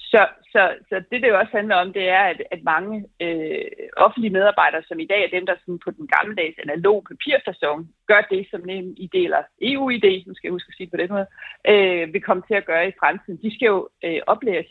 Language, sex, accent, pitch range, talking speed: Danish, female, native, 180-215 Hz, 240 wpm